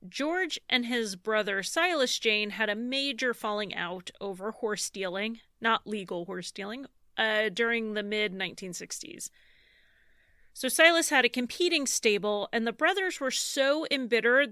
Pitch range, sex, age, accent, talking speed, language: 210-255 Hz, female, 30-49, American, 140 wpm, English